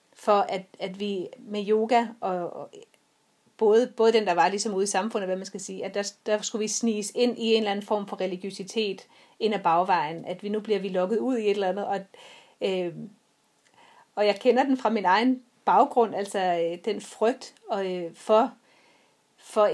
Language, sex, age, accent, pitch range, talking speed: Danish, female, 30-49, native, 200-235 Hz, 205 wpm